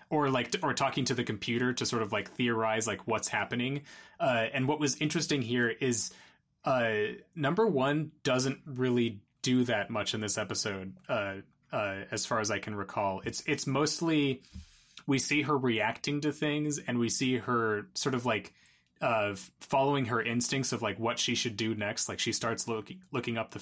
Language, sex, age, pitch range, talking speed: English, male, 20-39, 105-135 Hz, 190 wpm